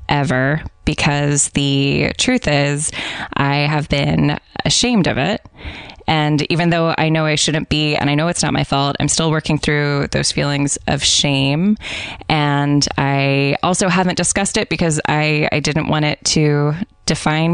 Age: 20-39